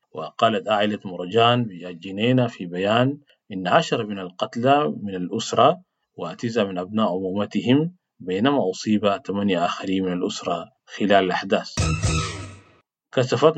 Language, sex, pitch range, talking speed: English, male, 95-125 Hz, 110 wpm